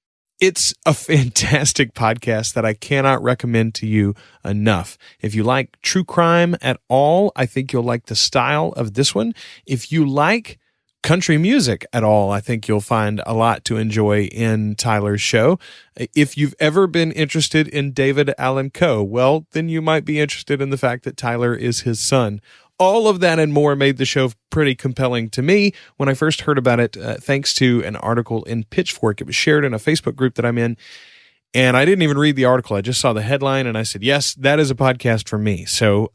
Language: English